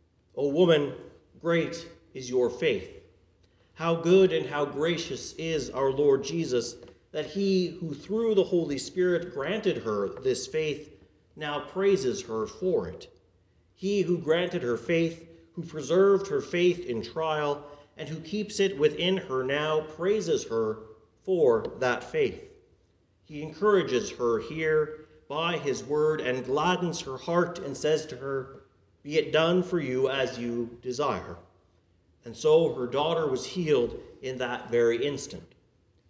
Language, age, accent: English, 40-59, American